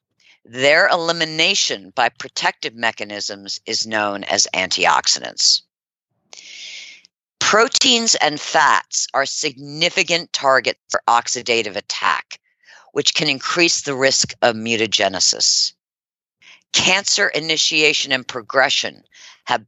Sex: female